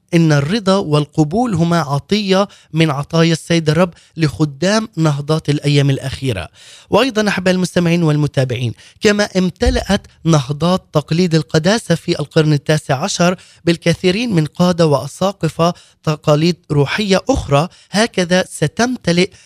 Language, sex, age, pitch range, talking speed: Arabic, male, 20-39, 155-190 Hz, 110 wpm